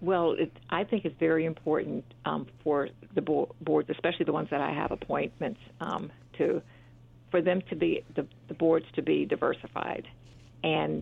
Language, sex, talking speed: English, female, 175 wpm